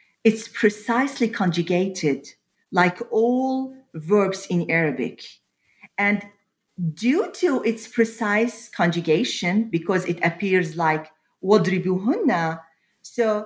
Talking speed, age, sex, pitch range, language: 85 wpm, 40-59, female, 175-245 Hz, English